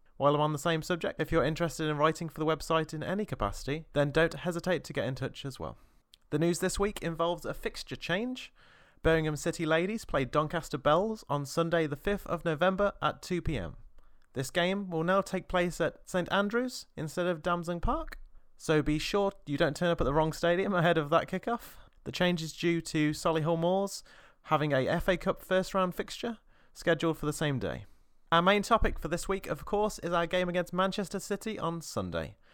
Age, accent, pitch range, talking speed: 30-49, British, 150-185 Hz, 205 wpm